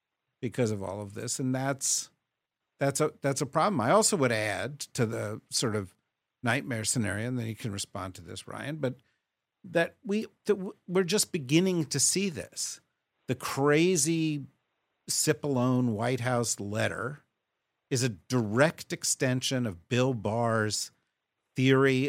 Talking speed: 145 wpm